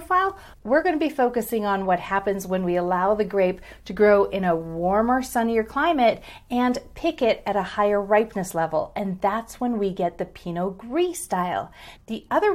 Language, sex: English, female